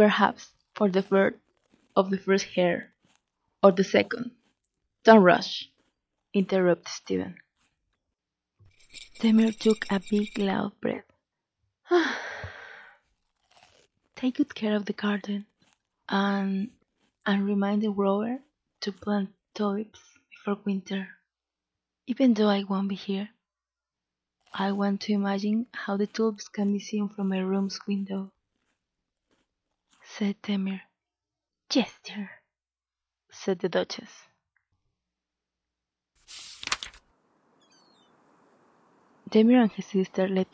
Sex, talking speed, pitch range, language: female, 100 wpm, 195-215 Hz, English